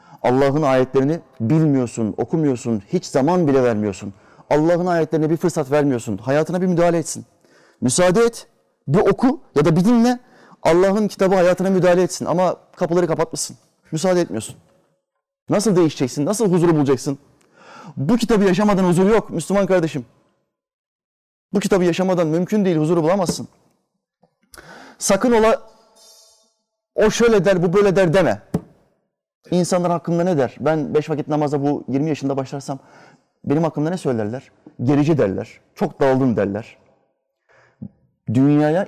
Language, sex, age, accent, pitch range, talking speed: Turkish, male, 30-49, native, 145-195 Hz, 130 wpm